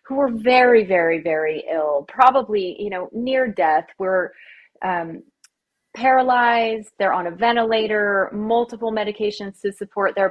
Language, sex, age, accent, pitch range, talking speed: English, female, 30-49, American, 190-250 Hz, 130 wpm